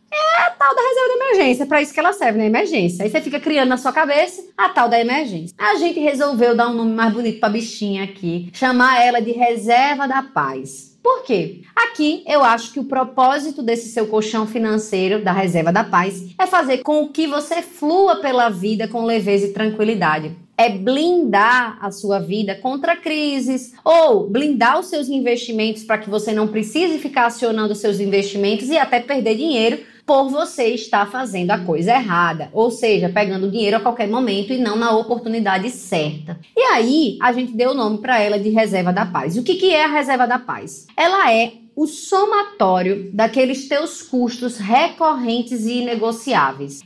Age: 20-39